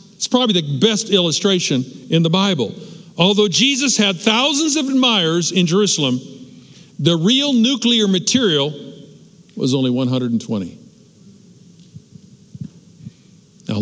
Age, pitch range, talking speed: 50-69, 145-200 Hz, 105 wpm